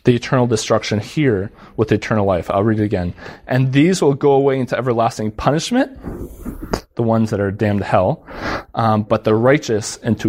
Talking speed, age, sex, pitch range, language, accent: 180 wpm, 20-39, male, 105-135 Hz, English, American